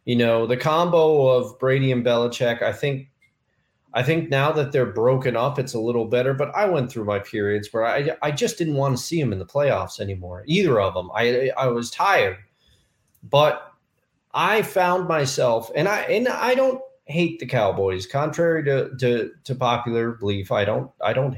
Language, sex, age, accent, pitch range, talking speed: English, male, 30-49, American, 105-135 Hz, 195 wpm